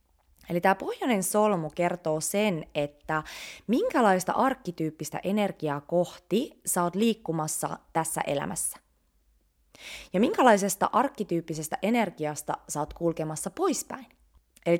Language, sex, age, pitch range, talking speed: English, female, 20-39, 150-200 Hz, 95 wpm